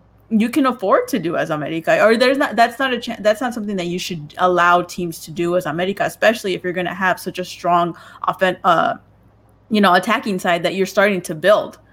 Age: 20-39